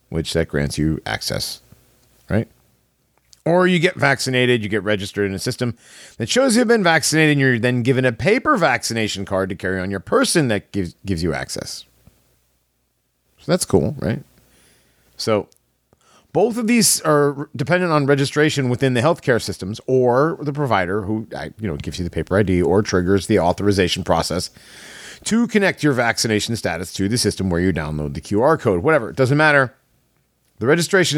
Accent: American